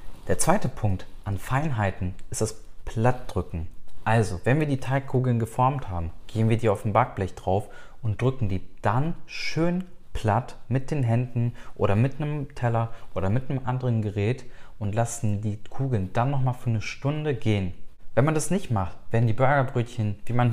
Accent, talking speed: German, 175 wpm